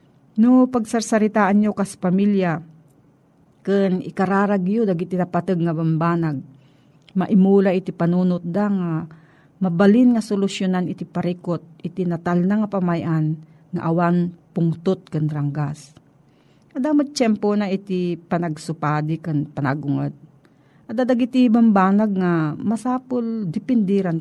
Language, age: Filipino, 40-59